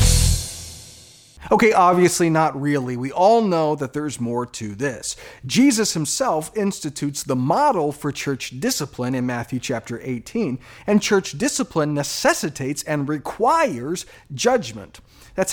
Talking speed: 125 wpm